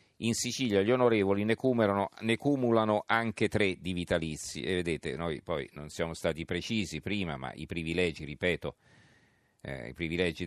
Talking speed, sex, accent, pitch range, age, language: 155 wpm, male, native, 85-105 Hz, 40-59, Italian